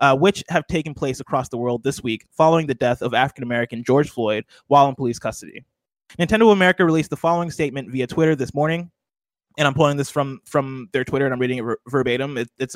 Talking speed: 225 wpm